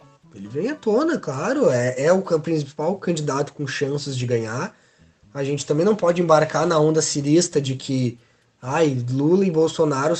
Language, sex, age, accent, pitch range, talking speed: Portuguese, male, 20-39, Brazilian, 140-190 Hz, 170 wpm